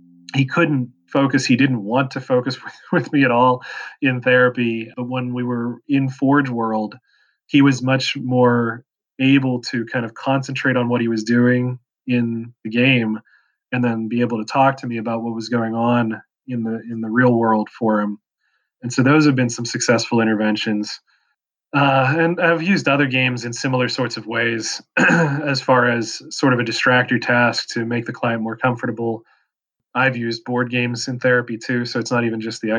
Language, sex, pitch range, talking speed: English, male, 115-130 Hz, 195 wpm